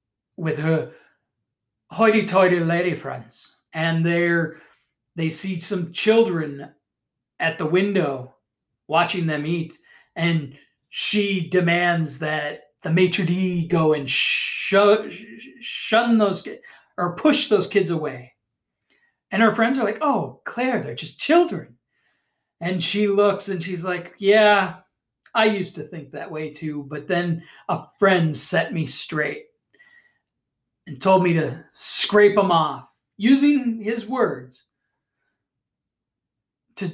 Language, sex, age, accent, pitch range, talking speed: English, male, 40-59, American, 145-200 Hz, 120 wpm